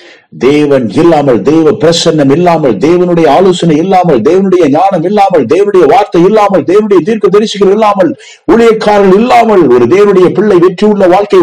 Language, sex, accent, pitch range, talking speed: Tamil, male, native, 115-190 Hz, 130 wpm